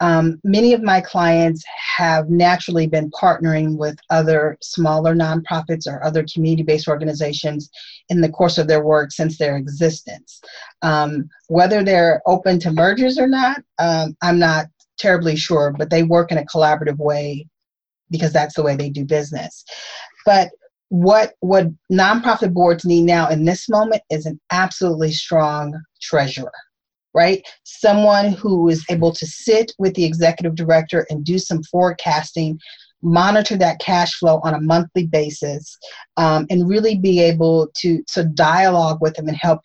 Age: 40-59